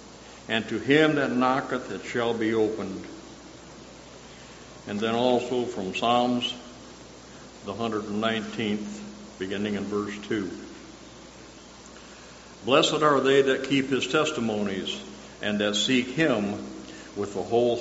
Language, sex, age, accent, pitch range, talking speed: English, male, 60-79, American, 95-120 Hz, 120 wpm